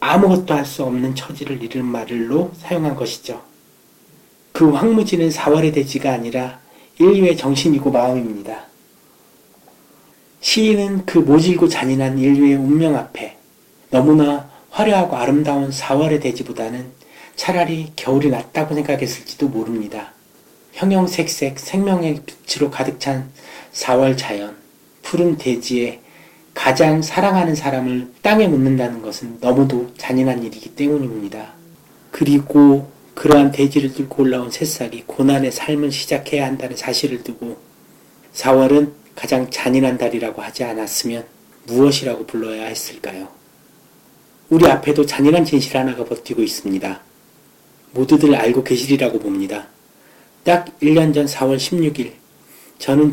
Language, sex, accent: Korean, male, native